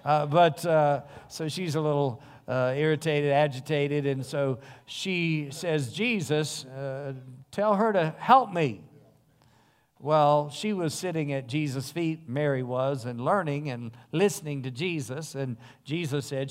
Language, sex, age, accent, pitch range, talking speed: English, male, 50-69, American, 135-160 Hz, 140 wpm